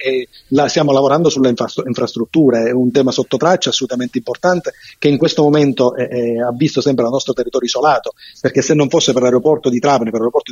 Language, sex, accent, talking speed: Italian, male, native, 200 wpm